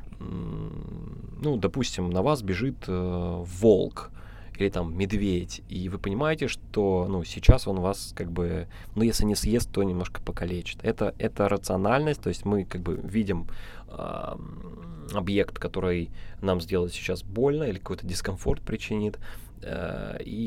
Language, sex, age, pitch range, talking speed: Russian, male, 20-39, 90-110 Hz, 145 wpm